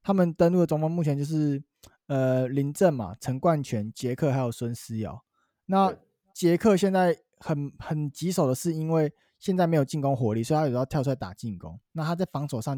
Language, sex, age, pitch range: Chinese, male, 20-39, 130-175 Hz